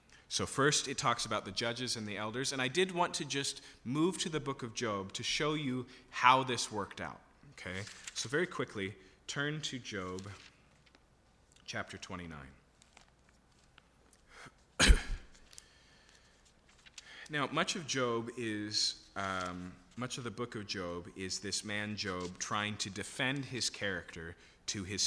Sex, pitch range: male, 100-135 Hz